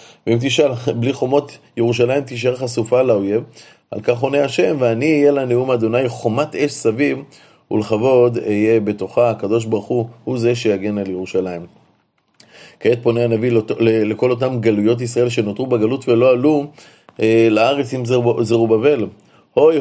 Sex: male